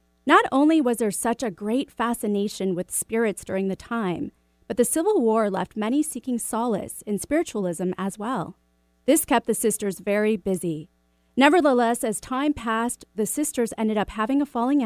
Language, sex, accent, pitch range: English, female, American, 195-260 Hz